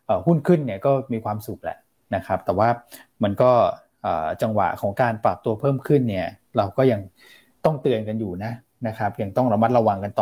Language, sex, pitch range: Thai, male, 110-130 Hz